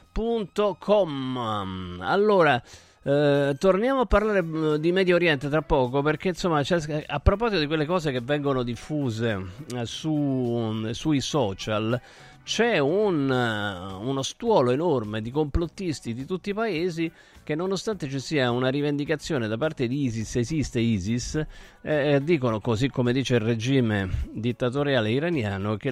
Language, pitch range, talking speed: Italian, 110-155 Hz, 135 wpm